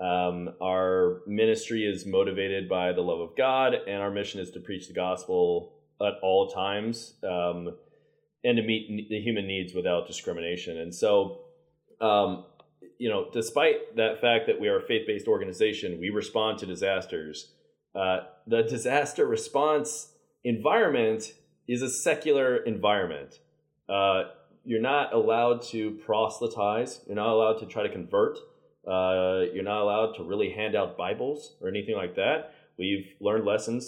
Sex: male